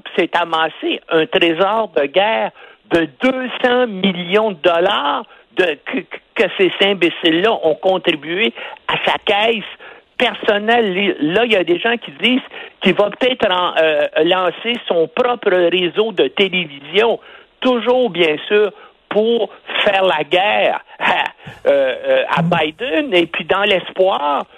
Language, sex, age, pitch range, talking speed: French, male, 60-79, 155-225 Hz, 125 wpm